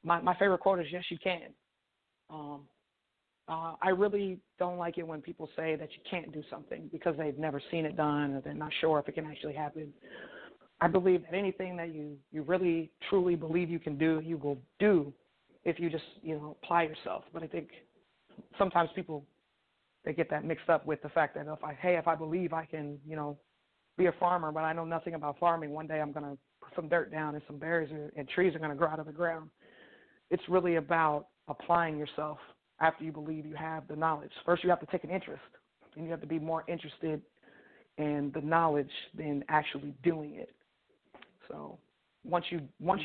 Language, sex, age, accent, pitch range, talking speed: English, female, 30-49, American, 150-170 Hz, 210 wpm